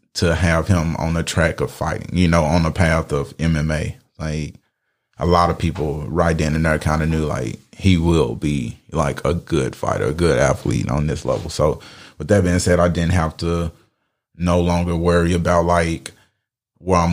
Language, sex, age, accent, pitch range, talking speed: English, male, 30-49, American, 80-90 Hz, 200 wpm